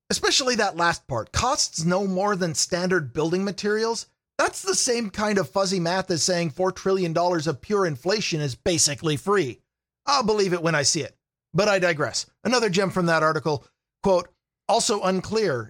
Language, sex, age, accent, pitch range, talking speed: English, male, 40-59, American, 150-200 Hz, 175 wpm